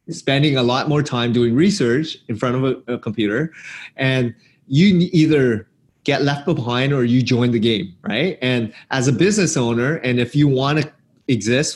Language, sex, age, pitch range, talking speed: English, male, 30-49, 115-140 Hz, 185 wpm